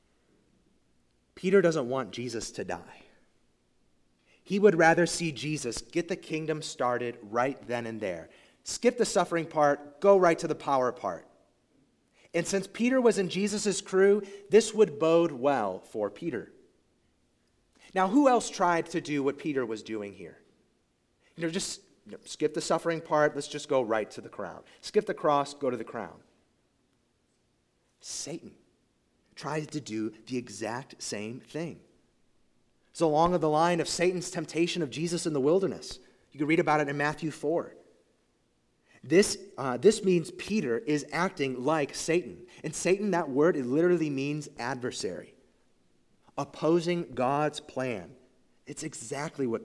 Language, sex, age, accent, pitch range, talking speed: English, male, 30-49, American, 125-175 Hz, 150 wpm